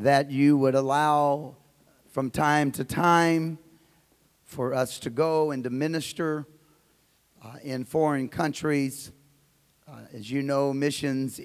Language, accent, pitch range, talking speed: English, American, 120-145 Hz, 125 wpm